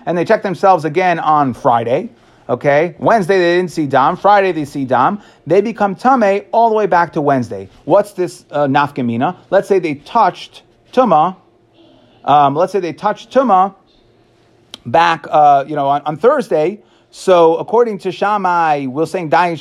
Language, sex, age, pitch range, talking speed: English, male, 30-49, 155-210 Hz, 170 wpm